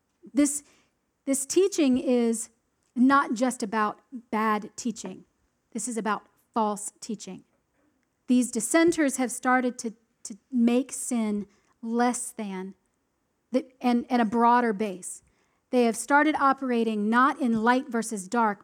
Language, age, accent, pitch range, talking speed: English, 40-59, American, 220-275 Hz, 125 wpm